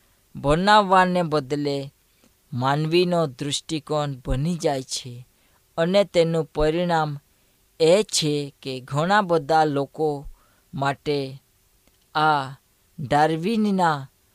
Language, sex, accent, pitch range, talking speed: Hindi, female, native, 135-175 Hz, 50 wpm